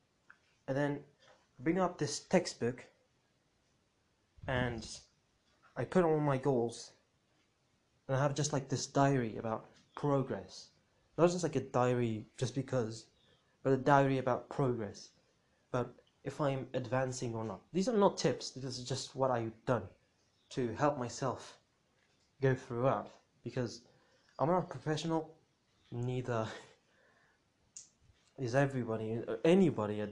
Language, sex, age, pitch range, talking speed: English, male, 20-39, 120-145 Hz, 130 wpm